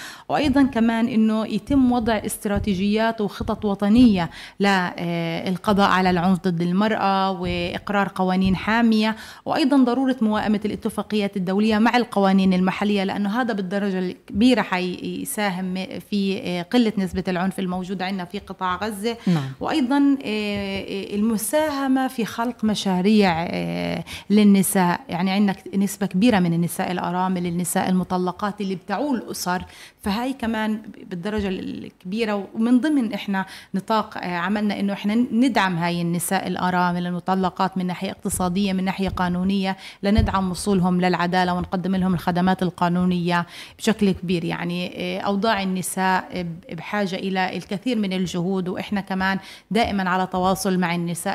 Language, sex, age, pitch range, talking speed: Arabic, female, 30-49, 180-215 Hz, 120 wpm